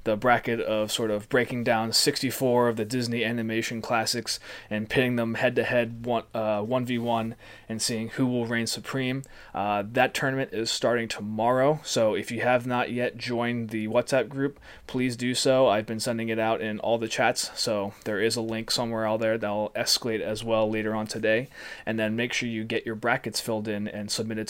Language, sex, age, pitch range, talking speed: English, male, 20-39, 110-125 Hz, 205 wpm